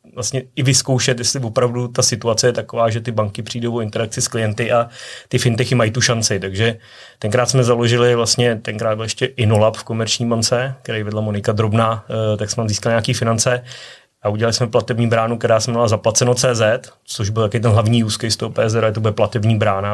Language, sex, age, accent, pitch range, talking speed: Czech, male, 30-49, native, 110-120 Hz, 200 wpm